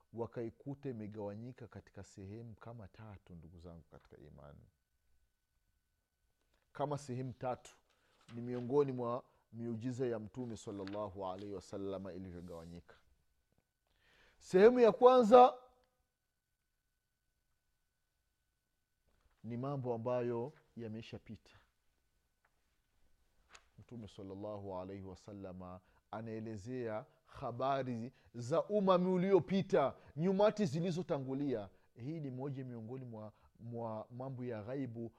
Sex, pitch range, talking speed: male, 95-155 Hz, 85 wpm